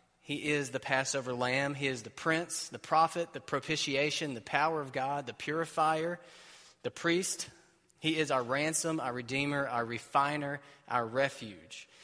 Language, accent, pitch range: English, American, 120-140 Hz